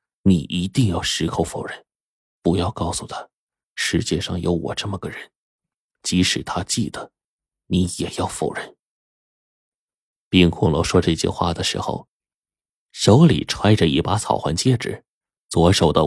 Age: 30-49